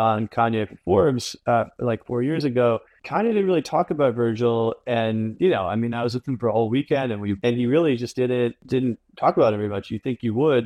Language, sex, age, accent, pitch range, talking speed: English, male, 30-49, American, 110-130 Hz, 250 wpm